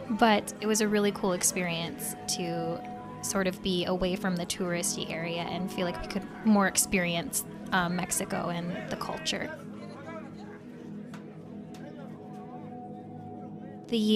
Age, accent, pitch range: 10-29, American, 185-215 Hz